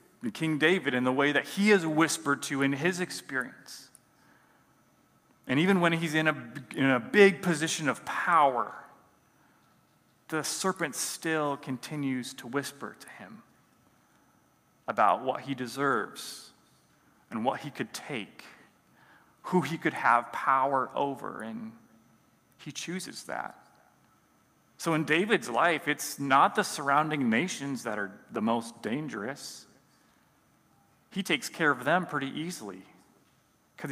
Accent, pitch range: American, 125-160 Hz